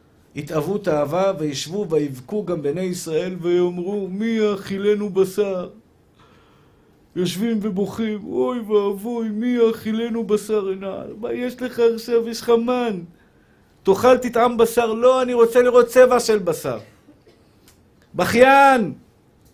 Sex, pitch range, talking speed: male, 170-230 Hz, 110 wpm